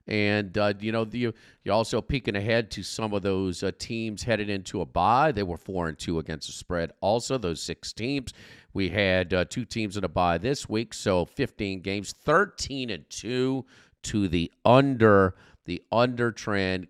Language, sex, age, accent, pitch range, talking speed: English, male, 50-69, American, 95-125 Hz, 180 wpm